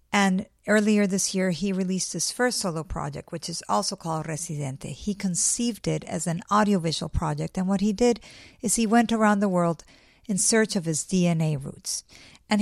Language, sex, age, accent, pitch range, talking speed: English, female, 50-69, American, 165-200 Hz, 185 wpm